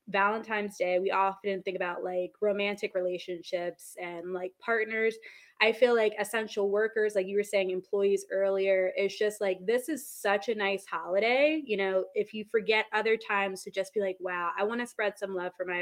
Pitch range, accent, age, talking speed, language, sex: 185-220 Hz, American, 20-39, 200 wpm, English, female